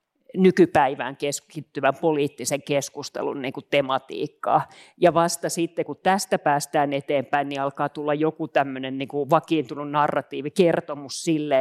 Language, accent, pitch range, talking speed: Finnish, native, 140-160 Hz, 115 wpm